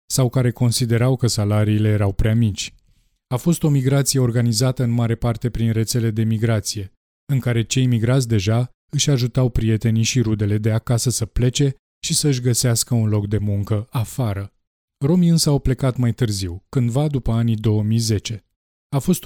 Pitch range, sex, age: 110-130 Hz, male, 20-39